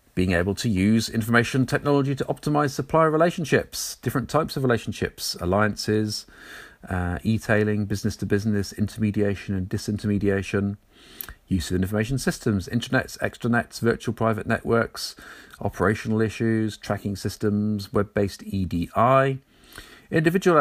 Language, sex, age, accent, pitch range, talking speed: English, male, 40-59, British, 95-115 Hz, 110 wpm